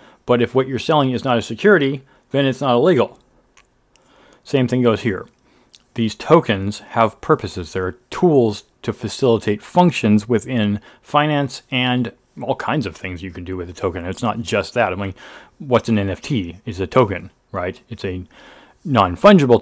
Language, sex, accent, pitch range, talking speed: English, male, American, 105-135 Hz, 170 wpm